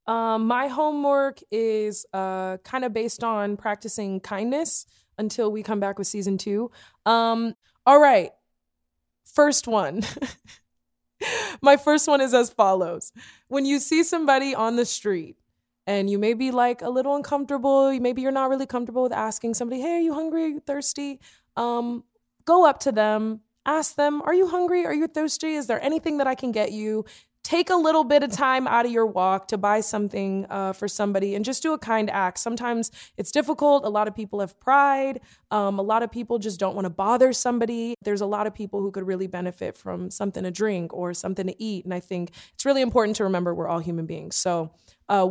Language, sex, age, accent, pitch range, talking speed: English, female, 20-39, American, 195-270 Hz, 205 wpm